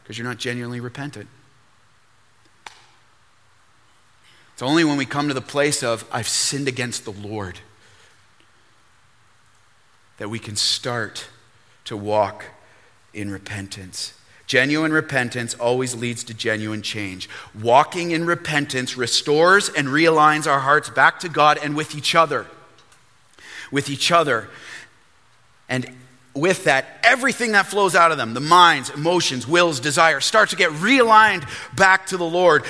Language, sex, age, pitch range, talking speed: English, male, 30-49, 120-190 Hz, 135 wpm